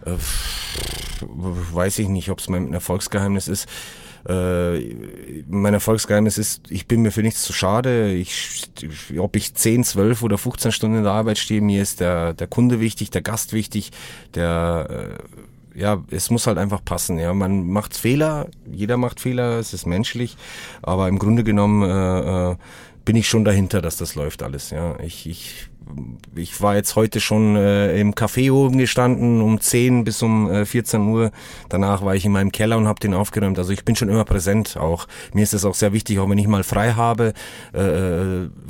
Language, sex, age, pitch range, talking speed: German, male, 30-49, 95-110 Hz, 185 wpm